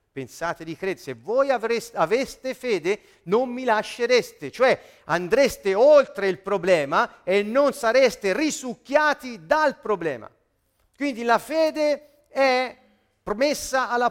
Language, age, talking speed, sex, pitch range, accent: Italian, 40-59, 120 wpm, male, 165-240 Hz, native